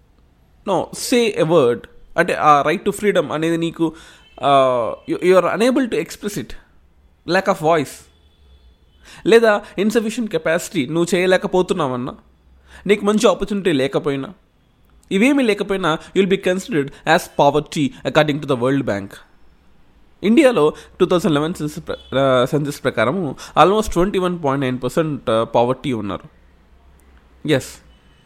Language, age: Telugu, 20-39